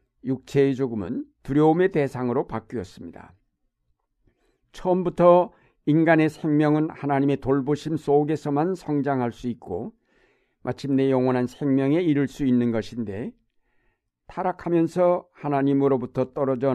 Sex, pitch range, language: male, 130-160 Hz, Korean